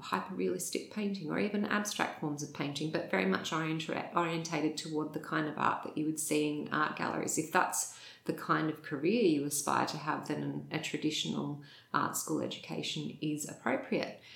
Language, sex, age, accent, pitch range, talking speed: English, female, 30-49, Australian, 150-210 Hz, 175 wpm